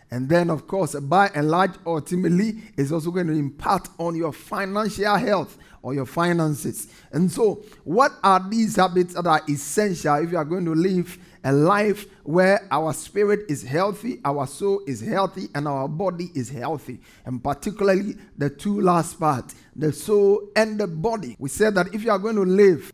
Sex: male